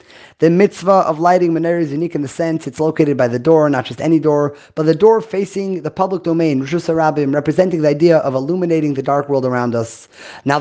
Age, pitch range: 30-49, 150-180 Hz